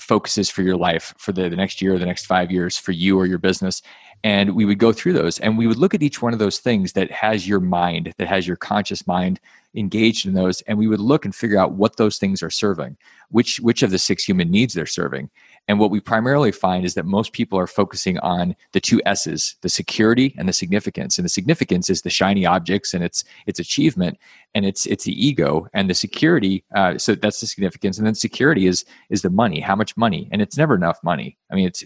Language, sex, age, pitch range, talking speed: English, male, 30-49, 95-110 Hz, 245 wpm